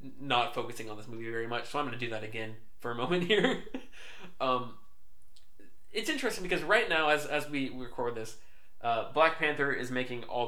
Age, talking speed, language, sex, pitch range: 20-39, 200 wpm, English, male, 115-145 Hz